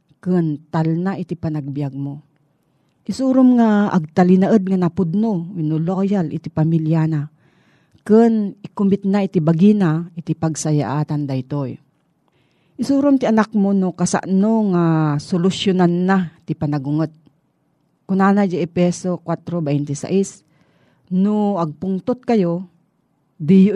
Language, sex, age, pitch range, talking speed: Filipino, female, 40-59, 155-200 Hz, 115 wpm